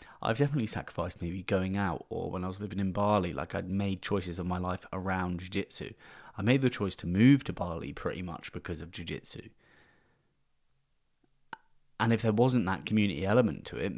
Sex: male